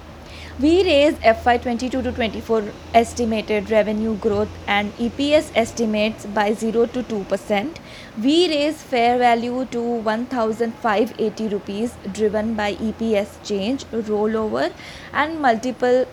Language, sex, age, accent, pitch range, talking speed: English, female, 20-39, Indian, 215-255 Hz, 100 wpm